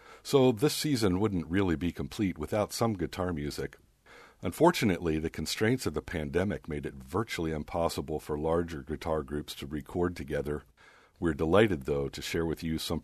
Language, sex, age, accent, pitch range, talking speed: English, male, 50-69, American, 80-105 Hz, 165 wpm